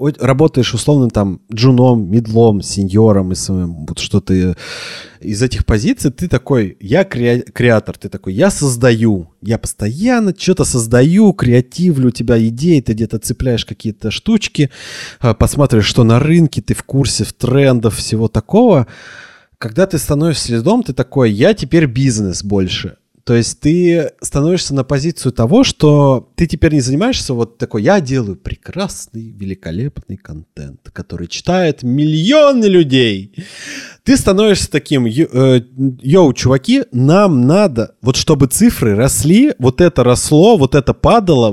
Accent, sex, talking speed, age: native, male, 135 wpm, 20-39